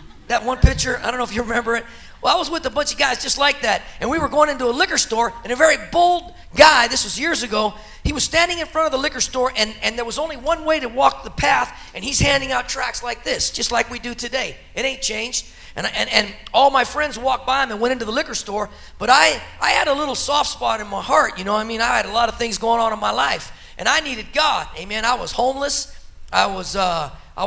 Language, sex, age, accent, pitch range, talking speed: English, male, 40-59, American, 225-295 Hz, 280 wpm